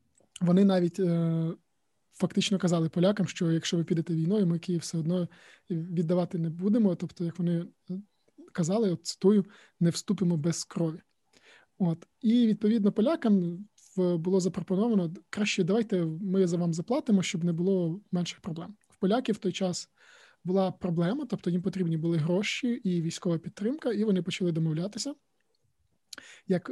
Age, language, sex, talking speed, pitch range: 20-39, Ukrainian, male, 145 wpm, 170-195 Hz